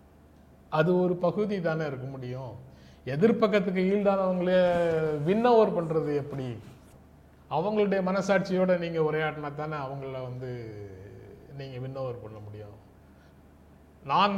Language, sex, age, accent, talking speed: Tamil, male, 30-49, native, 110 wpm